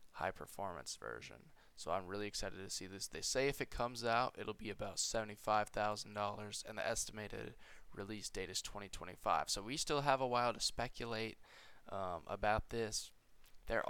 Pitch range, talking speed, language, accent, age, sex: 105-125 Hz, 170 wpm, English, American, 20-39, male